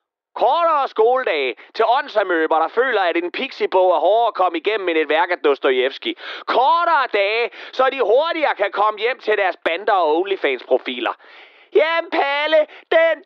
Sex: male